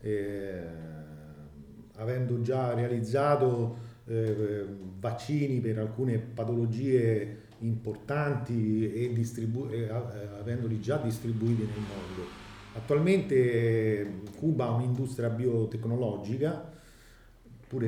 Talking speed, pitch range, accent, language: 80 wpm, 105-130 Hz, native, Italian